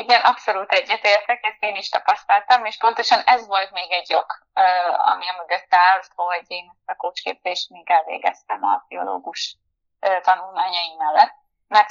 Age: 20-39